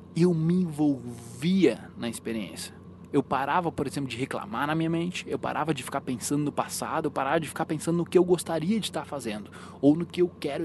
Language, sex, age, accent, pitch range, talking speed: Portuguese, male, 20-39, Brazilian, 130-175 Hz, 215 wpm